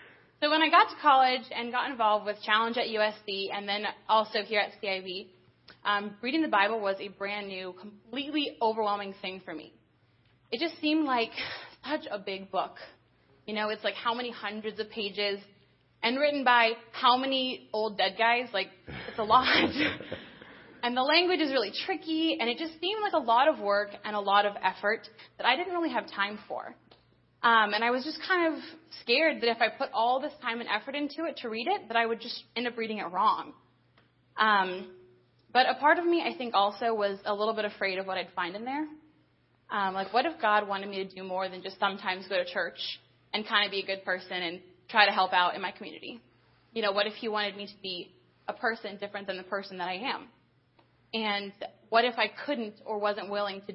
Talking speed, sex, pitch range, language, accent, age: 220 wpm, female, 200-250 Hz, English, American, 20-39